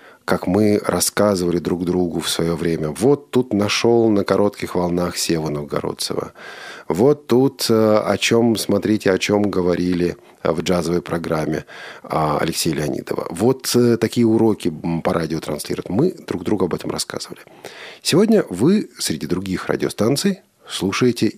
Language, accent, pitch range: Russian, native, 90-140 Hz